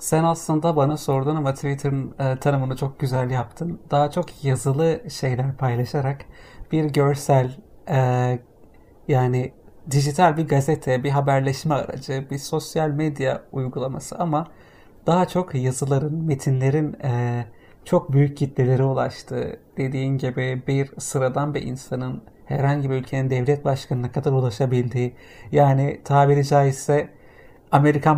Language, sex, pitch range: Turkish, male, 130-150 Hz